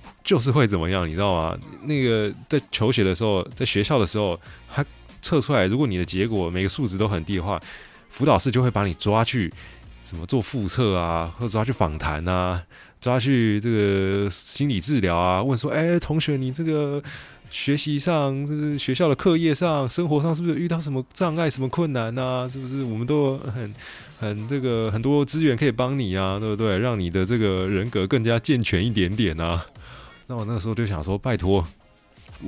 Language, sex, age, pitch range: Chinese, male, 20-39, 100-135 Hz